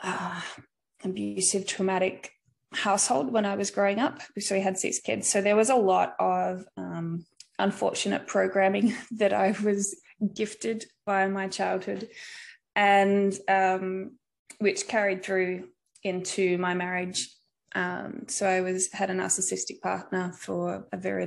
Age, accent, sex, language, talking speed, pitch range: 20-39, Australian, female, English, 140 wpm, 180-205 Hz